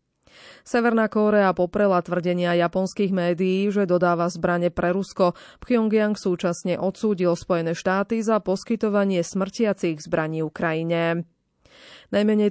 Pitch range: 170-200 Hz